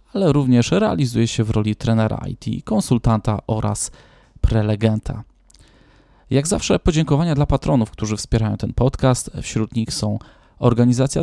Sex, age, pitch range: male, 20-39, 115-135 Hz